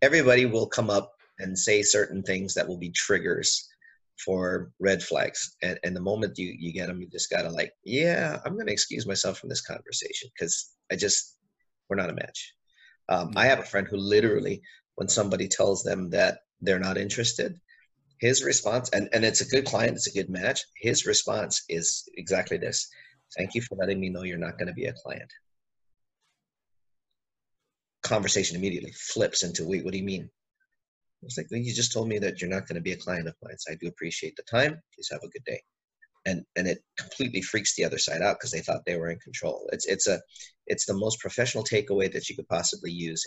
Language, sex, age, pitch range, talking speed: English, male, 40-59, 90-125 Hz, 210 wpm